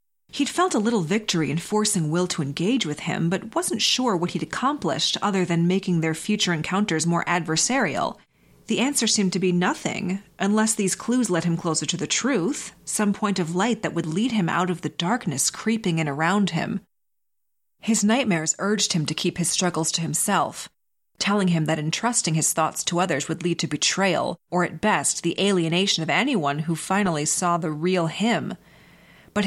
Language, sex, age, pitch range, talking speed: English, female, 30-49, 165-210 Hz, 190 wpm